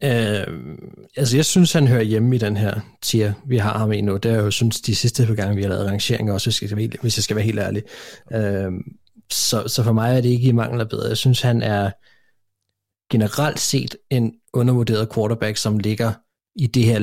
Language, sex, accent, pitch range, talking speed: Danish, male, native, 105-125 Hz, 230 wpm